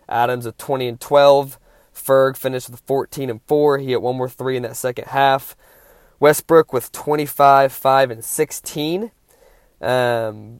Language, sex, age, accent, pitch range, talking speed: English, male, 20-39, American, 120-140 Hz, 155 wpm